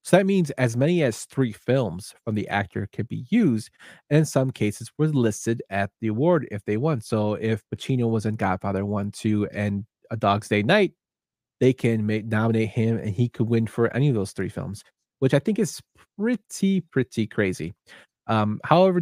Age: 20-39